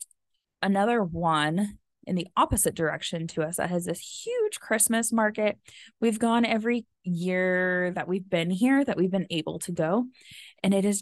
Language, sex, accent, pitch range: English, female, American, 165-210 Hz